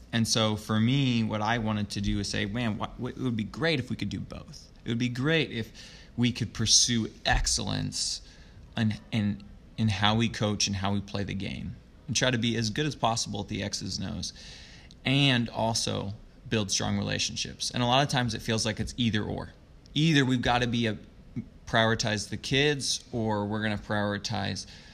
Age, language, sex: 20-39, English, male